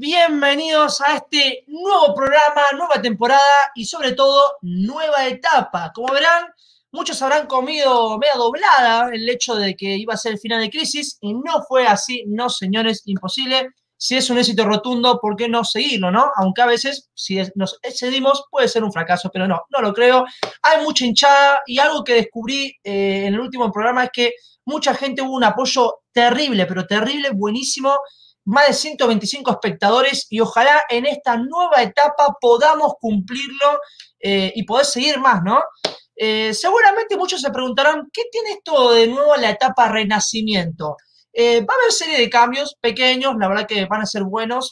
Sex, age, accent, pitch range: male, 20-39, Argentinian, 220-285 Hz